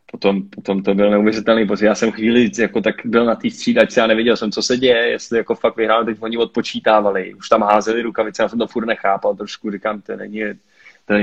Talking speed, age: 235 wpm, 20-39